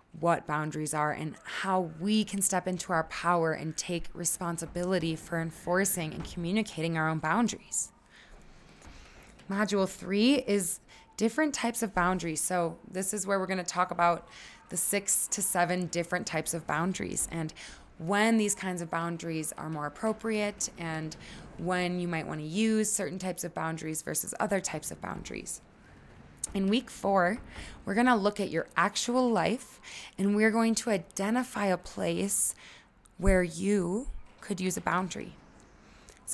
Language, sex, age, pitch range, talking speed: English, female, 20-39, 165-210 Hz, 155 wpm